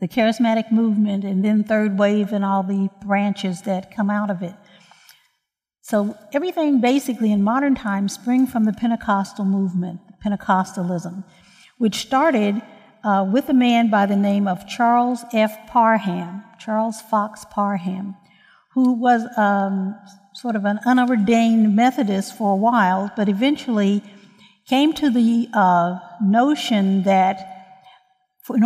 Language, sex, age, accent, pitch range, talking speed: English, female, 60-79, American, 200-245 Hz, 135 wpm